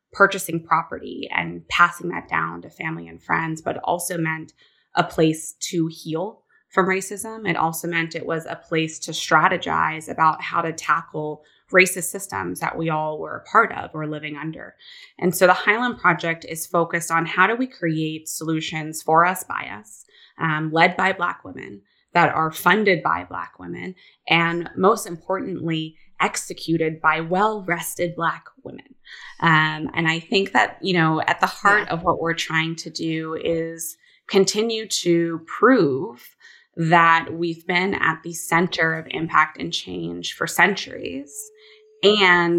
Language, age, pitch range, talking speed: English, 20-39, 160-185 Hz, 160 wpm